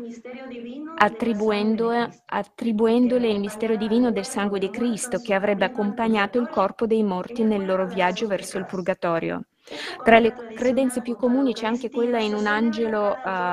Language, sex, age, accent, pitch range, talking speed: Italian, female, 20-39, native, 200-240 Hz, 140 wpm